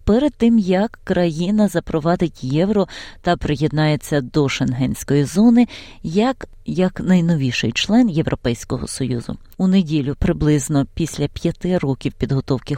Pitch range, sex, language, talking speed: 145-195 Hz, female, Ukrainian, 115 wpm